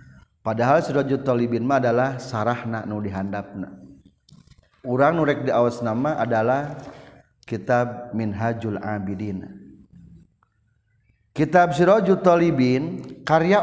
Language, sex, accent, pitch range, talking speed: Indonesian, male, native, 105-150 Hz, 85 wpm